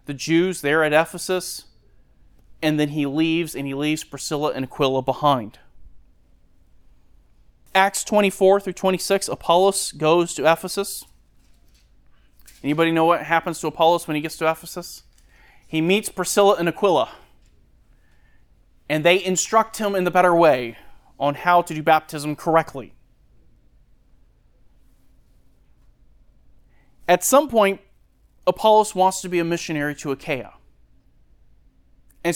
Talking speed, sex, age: 120 wpm, male, 30-49